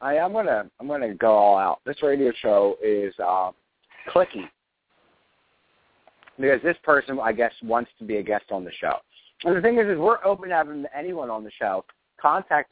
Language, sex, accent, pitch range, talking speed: English, male, American, 115-140 Hz, 205 wpm